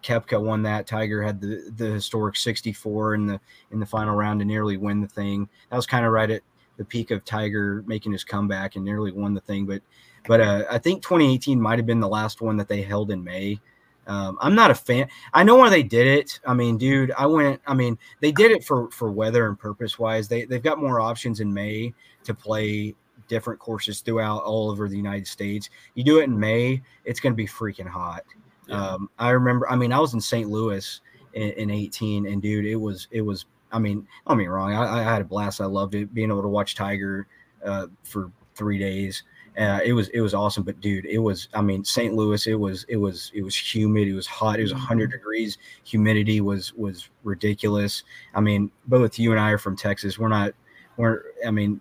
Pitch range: 100-115 Hz